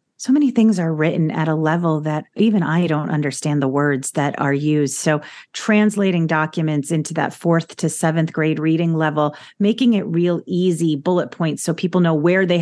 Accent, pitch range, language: American, 155-195 Hz, English